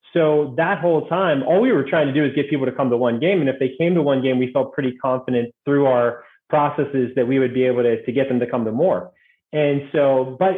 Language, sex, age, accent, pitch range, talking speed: English, male, 30-49, American, 130-155 Hz, 270 wpm